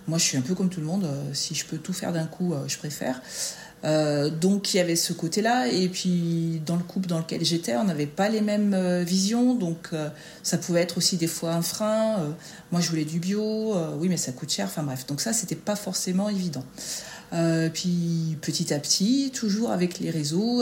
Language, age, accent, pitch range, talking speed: French, 40-59, French, 150-185 Hz, 230 wpm